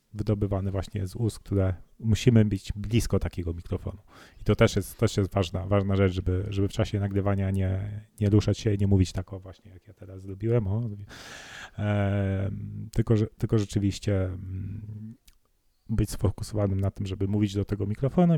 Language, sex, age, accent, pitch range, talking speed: Polish, male, 30-49, native, 100-120 Hz, 165 wpm